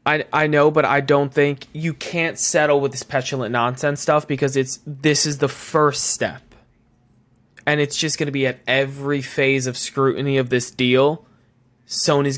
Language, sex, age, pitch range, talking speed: English, male, 20-39, 125-150 Hz, 180 wpm